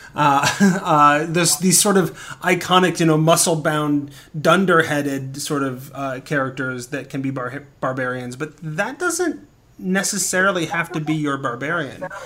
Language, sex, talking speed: English, male, 140 wpm